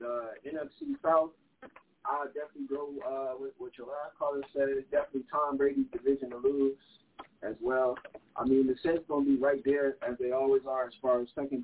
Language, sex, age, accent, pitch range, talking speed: English, male, 20-39, American, 135-195 Hz, 200 wpm